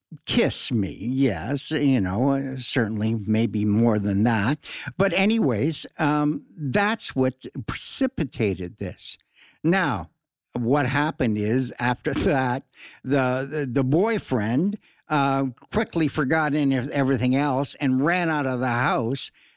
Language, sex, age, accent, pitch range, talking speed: English, male, 60-79, American, 115-150 Hz, 120 wpm